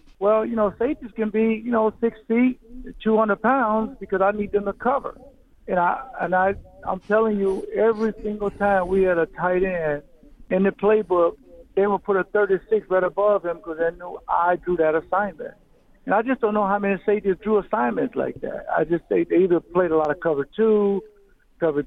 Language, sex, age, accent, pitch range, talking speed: English, male, 60-79, American, 165-215 Hz, 210 wpm